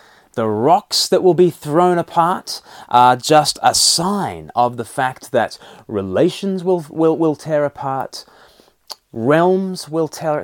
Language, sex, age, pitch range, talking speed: English, male, 30-49, 135-165 Hz, 140 wpm